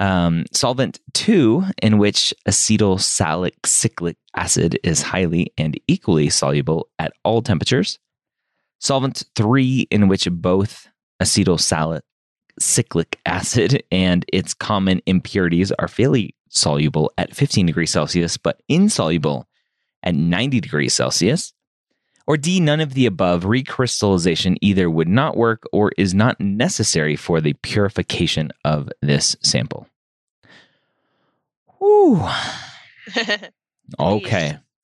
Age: 30-49